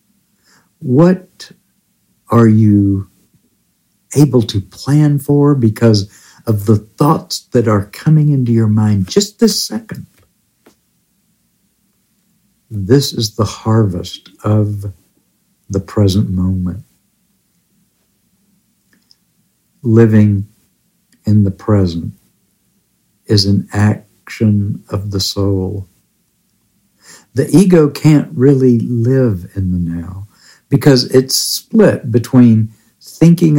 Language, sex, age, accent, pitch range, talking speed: English, male, 60-79, American, 100-135 Hz, 90 wpm